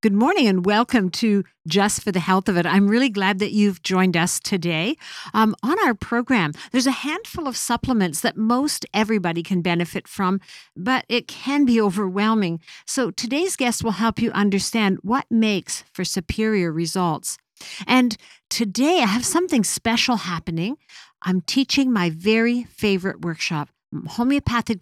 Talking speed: 155 wpm